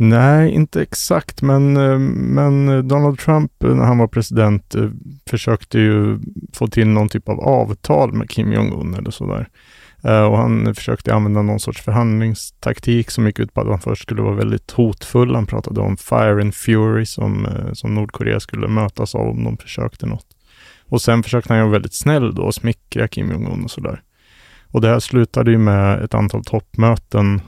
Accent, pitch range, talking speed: Norwegian, 105-120 Hz, 175 wpm